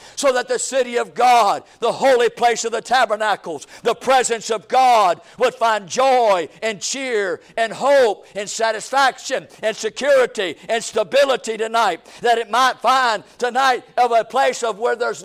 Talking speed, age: 160 wpm, 50-69